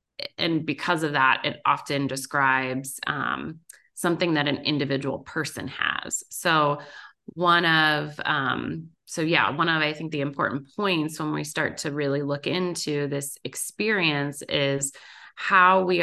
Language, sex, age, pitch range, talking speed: English, female, 30-49, 135-165 Hz, 145 wpm